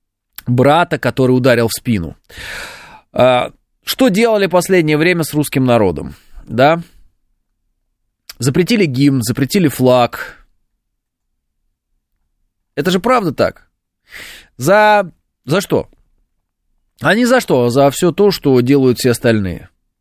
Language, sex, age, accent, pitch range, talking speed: Russian, male, 20-39, native, 115-175 Hz, 105 wpm